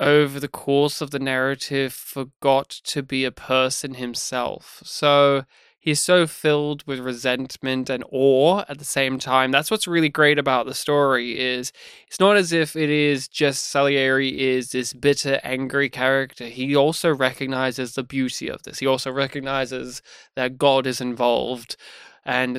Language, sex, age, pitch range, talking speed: English, male, 20-39, 130-175 Hz, 160 wpm